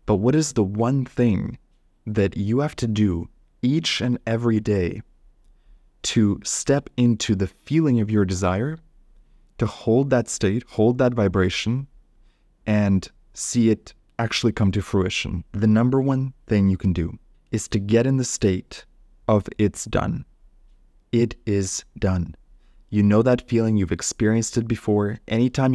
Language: English